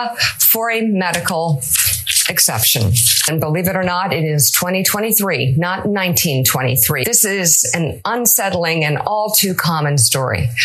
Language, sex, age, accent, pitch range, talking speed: English, female, 50-69, American, 160-225 Hz, 130 wpm